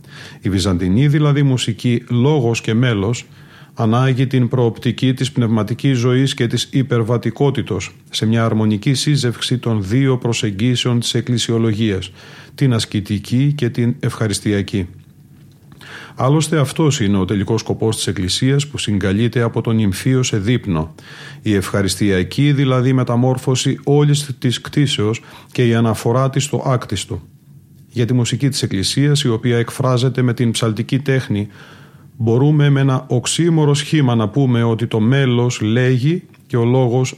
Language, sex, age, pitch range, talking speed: Greek, male, 40-59, 115-140 Hz, 135 wpm